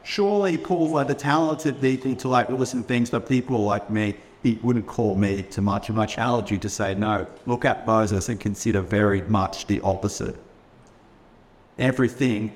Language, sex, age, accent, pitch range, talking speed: English, male, 50-69, Australian, 105-145 Hz, 165 wpm